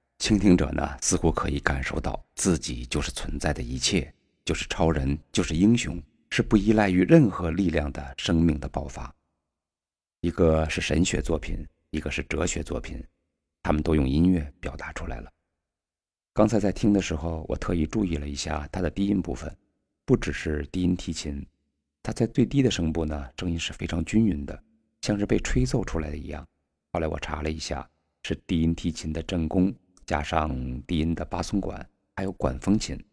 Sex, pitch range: male, 75-90 Hz